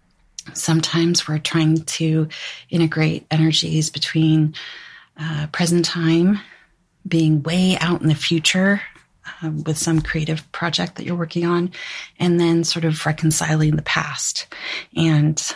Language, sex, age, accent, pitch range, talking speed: English, female, 30-49, American, 155-190 Hz, 125 wpm